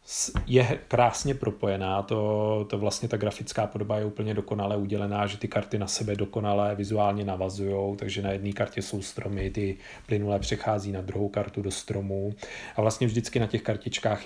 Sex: male